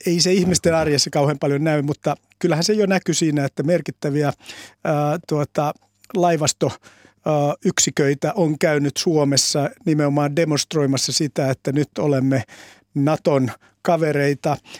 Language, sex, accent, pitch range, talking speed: Finnish, male, native, 140-165 Hz, 120 wpm